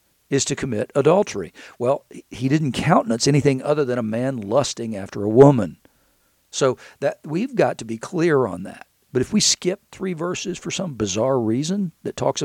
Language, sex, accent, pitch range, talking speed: English, male, American, 115-145 Hz, 185 wpm